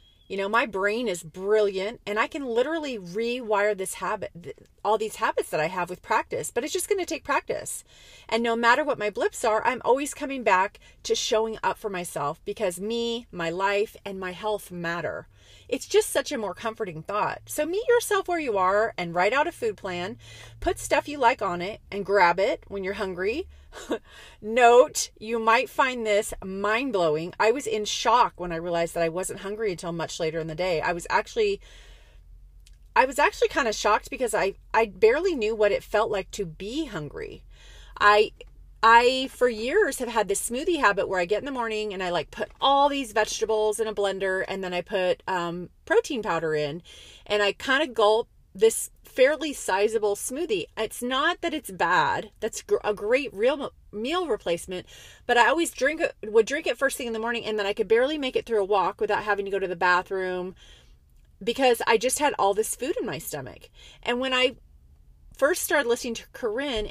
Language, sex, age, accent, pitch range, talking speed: English, female, 30-49, American, 190-265 Hz, 205 wpm